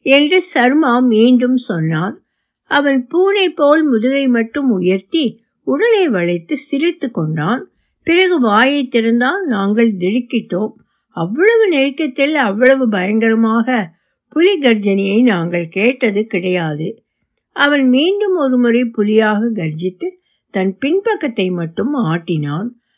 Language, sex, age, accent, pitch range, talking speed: Tamil, female, 60-79, native, 200-275 Hz, 95 wpm